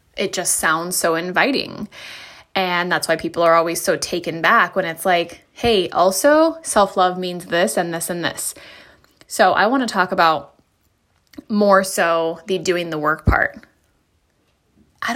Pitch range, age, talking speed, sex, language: 170-210 Hz, 10-29, 155 wpm, female, English